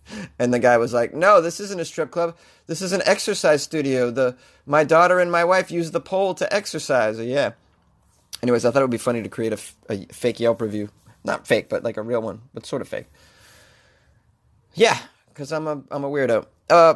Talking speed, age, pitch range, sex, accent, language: 215 wpm, 30-49, 120-155 Hz, male, American, English